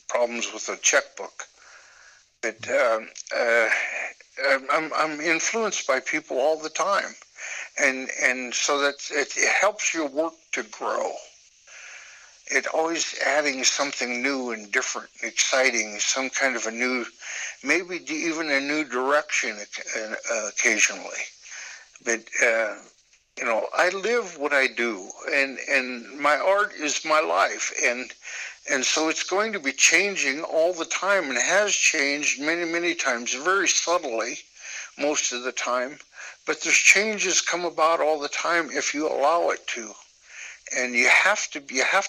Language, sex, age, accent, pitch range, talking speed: English, male, 60-79, American, 130-170 Hz, 140 wpm